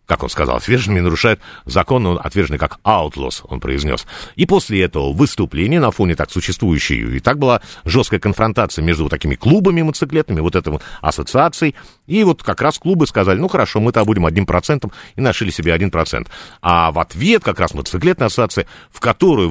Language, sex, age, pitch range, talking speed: Russian, male, 50-69, 80-125 Hz, 180 wpm